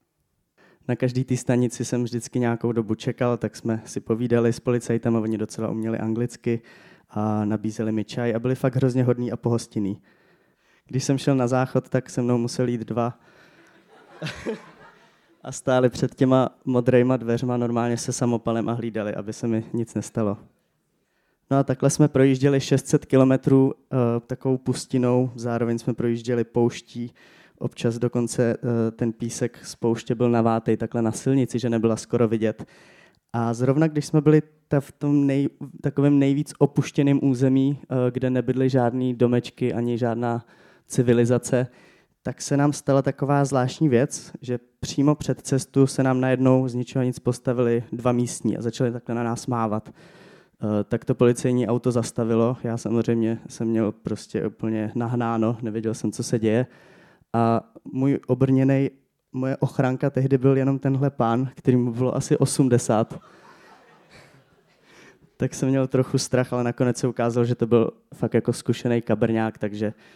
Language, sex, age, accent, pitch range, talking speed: Czech, male, 20-39, native, 115-135 Hz, 155 wpm